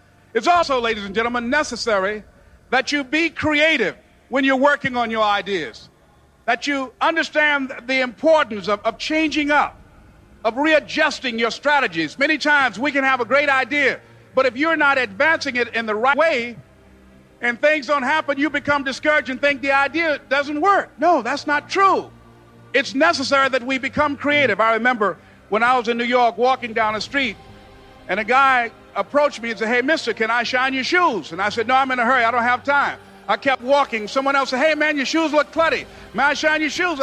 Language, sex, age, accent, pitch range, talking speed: English, male, 50-69, American, 235-290 Hz, 205 wpm